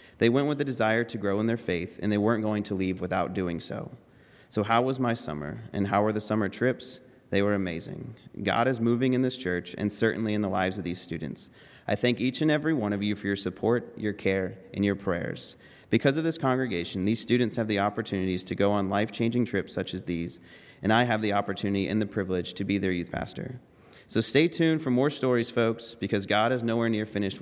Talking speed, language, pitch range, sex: 230 wpm, English, 95-125 Hz, male